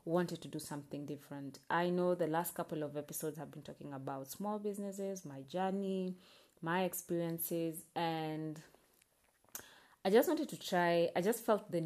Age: 30-49